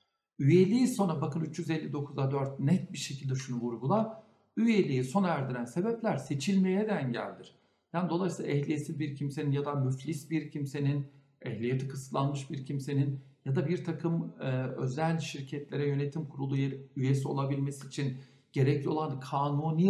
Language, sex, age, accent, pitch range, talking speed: Turkish, male, 60-79, native, 140-180 Hz, 135 wpm